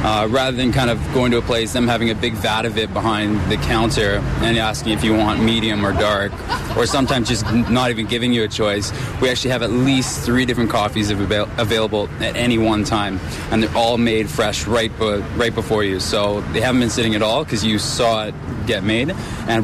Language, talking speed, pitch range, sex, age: English, 225 wpm, 105-125 Hz, male, 20-39